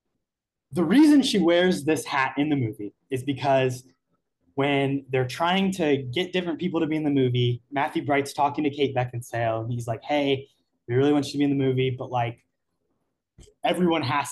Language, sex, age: English, male, 20-39